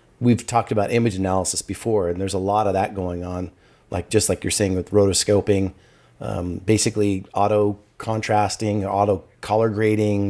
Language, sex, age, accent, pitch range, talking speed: English, male, 30-49, American, 100-115 Hz, 165 wpm